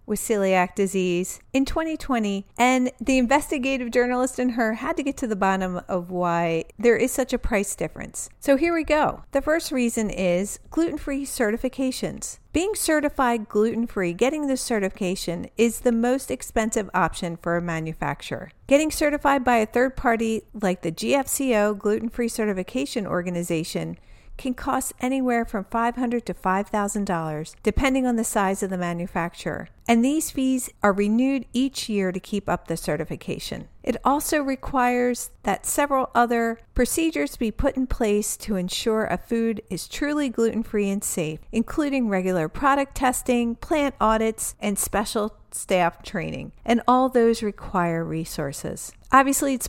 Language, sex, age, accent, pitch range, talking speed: English, female, 50-69, American, 190-260 Hz, 150 wpm